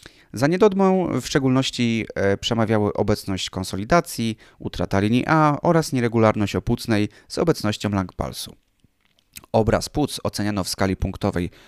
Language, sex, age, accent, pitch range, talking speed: Polish, male, 30-49, native, 95-135 Hz, 115 wpm